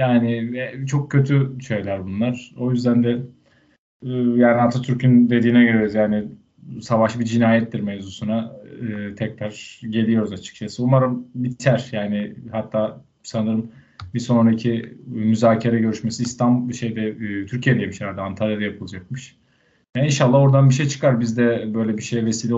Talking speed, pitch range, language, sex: 135 wpm, 110-130 Hz, Turkish, male